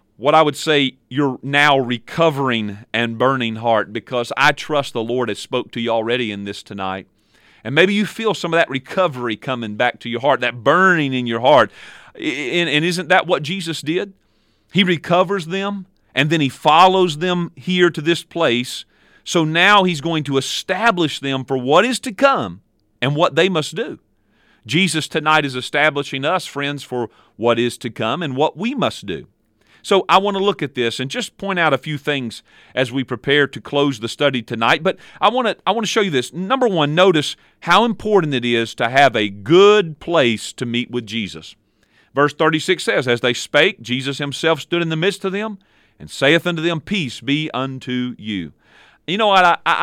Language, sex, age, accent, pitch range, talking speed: English, male, 40-59, American, 120-175 Hz, 200 wpm